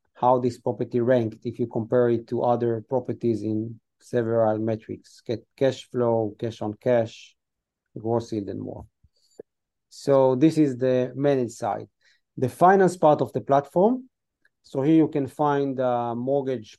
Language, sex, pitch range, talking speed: English, male, 115-135 Hz, 155 wpm